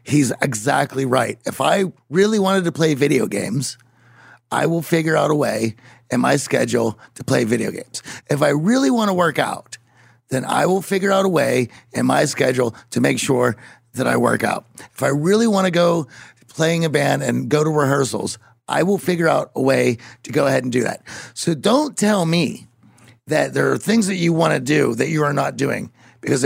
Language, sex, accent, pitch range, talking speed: English, male, American, 130-175 Hz, 210 wpm